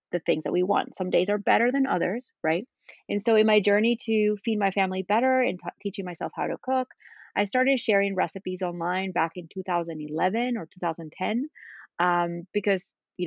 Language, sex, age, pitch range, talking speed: English, female, 30-49, 175-235 Hz, 185 wpm